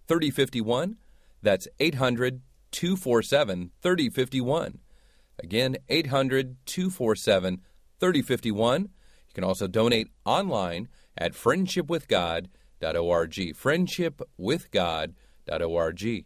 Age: 40-59